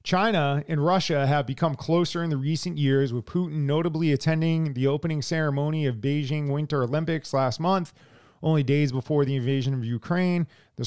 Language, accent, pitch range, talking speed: English, American, 135-160 Hz, 170 wpm